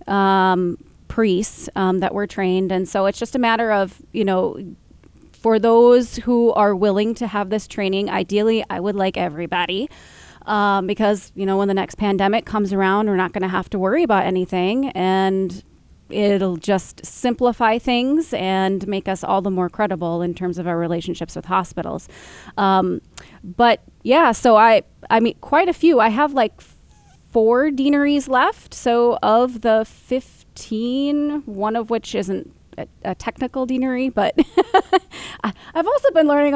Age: 20-39